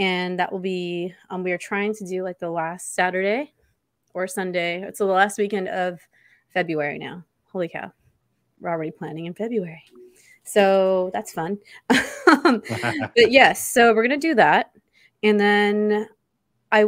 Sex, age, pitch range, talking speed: female, 20-39, 175-200 Hz, 155 wpm